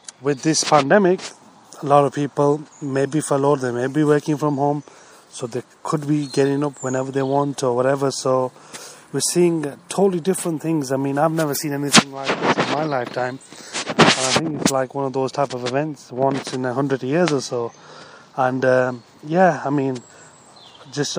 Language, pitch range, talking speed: English, 130-150 Hz, 190 wpm